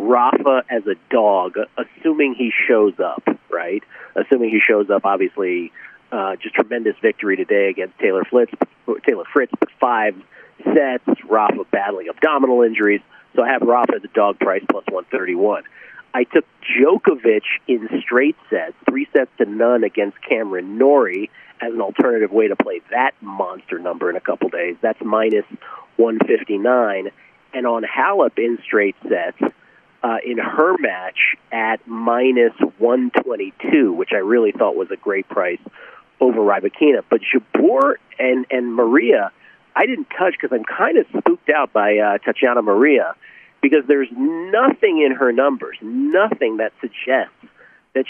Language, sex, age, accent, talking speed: English, male, 40-59, American, 155 wpm